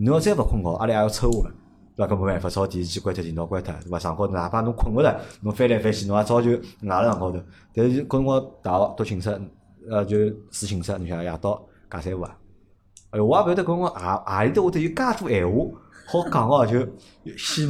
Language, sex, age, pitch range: Chinese, male, 30-49, 95-125 Hz